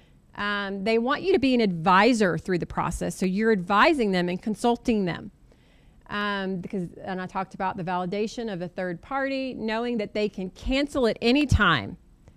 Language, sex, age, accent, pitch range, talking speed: English, female, 30-49, American, 195-250 Hz, 185 wpm